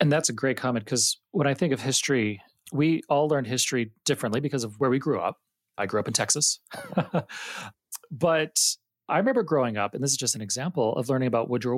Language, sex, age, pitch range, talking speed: English, male, 30-49, 115-150 Hz, 215 wpm